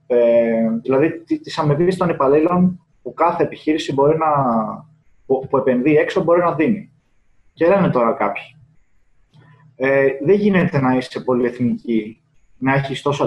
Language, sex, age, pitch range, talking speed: Greek, male, 20-39, 125-165 Hz, 140 wpm